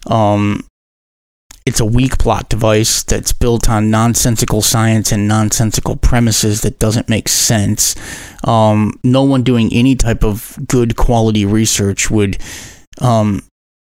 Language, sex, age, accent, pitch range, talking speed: English, male, 30-49, American, 105-120 Hz, 130 wpm